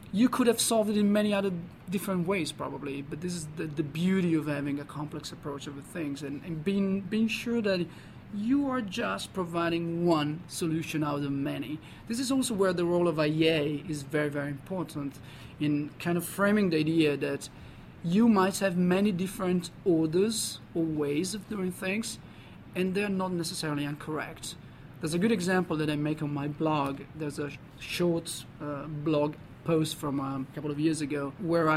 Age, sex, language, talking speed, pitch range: 40-59, male, English, 185 wpm, 145-180 Hz